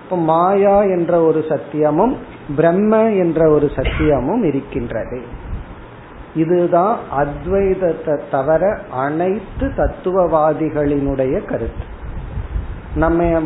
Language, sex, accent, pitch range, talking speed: Tamil, male, native, 145-190 Hz, 70 wpm